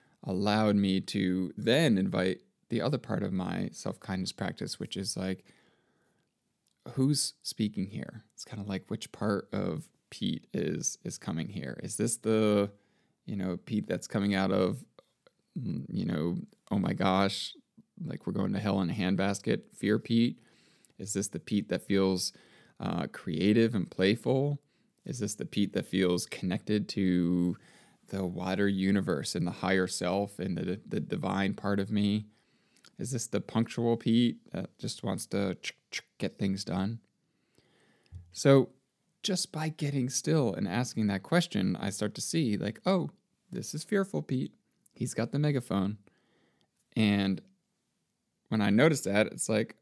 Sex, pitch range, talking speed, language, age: male, 95-135 Hz, 155 wpm, English, 20-39